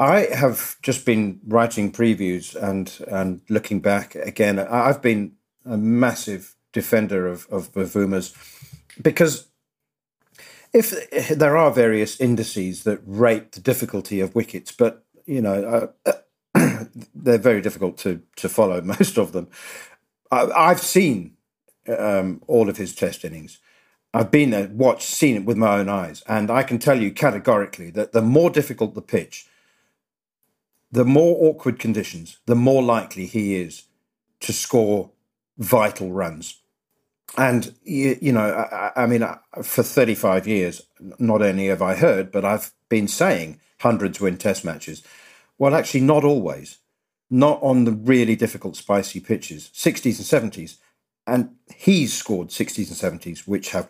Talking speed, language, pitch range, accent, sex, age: 150 wpm, English, 95-120 Hz, British, male, 40-59